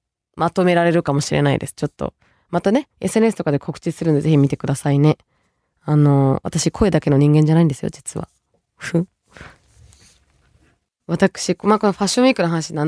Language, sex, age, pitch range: Japanese, female, 20-39, 150-220 Hz